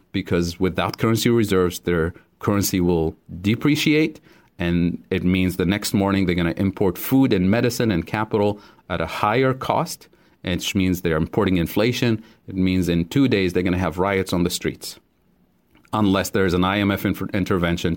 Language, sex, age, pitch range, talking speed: English, male, 40-59, 90-105 Hz, 165 wpm